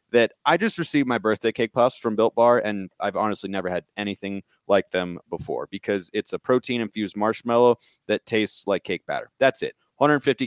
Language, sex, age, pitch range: English, male, 30-49, 95-120 Hz